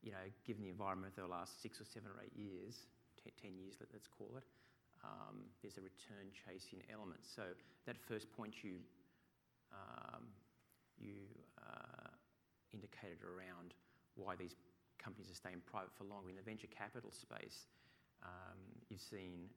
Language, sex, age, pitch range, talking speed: English, male, 40-59, 90-115 Hz, 160 wpm